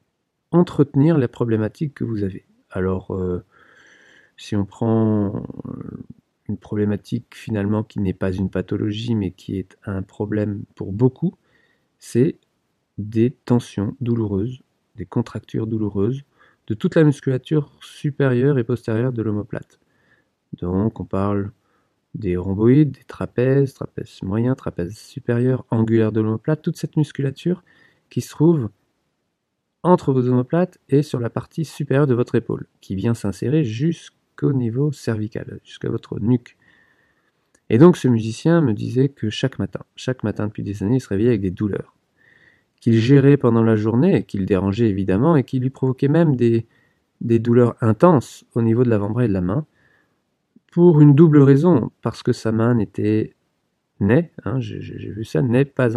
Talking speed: 155 wpm